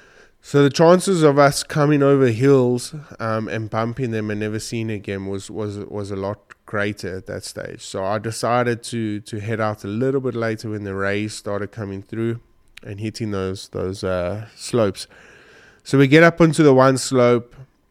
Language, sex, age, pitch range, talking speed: English, male, 20-39, 100-120 Hz, 190 wpm